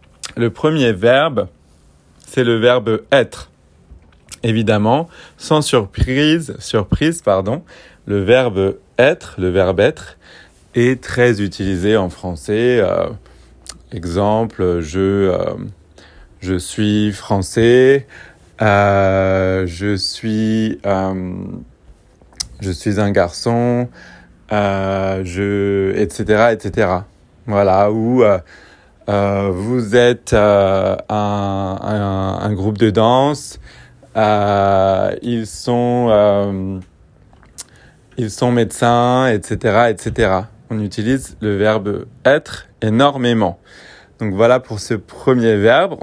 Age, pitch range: 30-49, 95-120 Hz